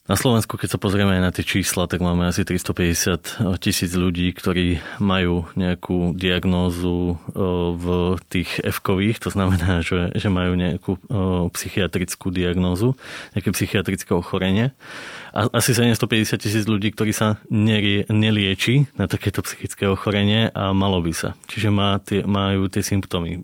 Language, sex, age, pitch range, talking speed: Slovak, male, 20-39, 95-110 Hz, 135 wpm